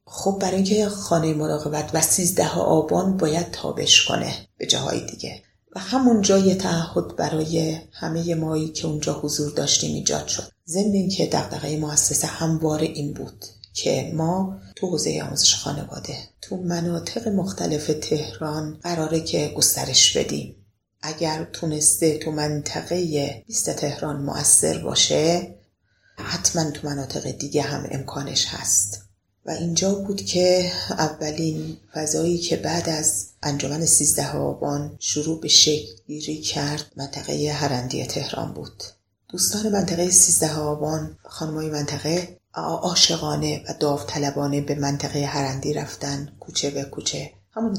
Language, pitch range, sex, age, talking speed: Persian, 145-165 Hz, female, 30-49, 125 wpm